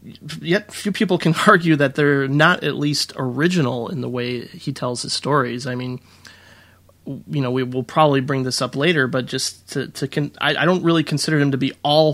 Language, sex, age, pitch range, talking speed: English, male, 30-49, 130-155 Hz, 210 wpm